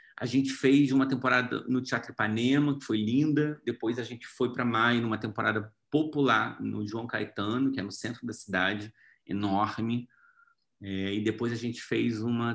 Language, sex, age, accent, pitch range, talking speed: Portuguese, male, 30-49, Brazilian, 105-140 Hz, 175 wpm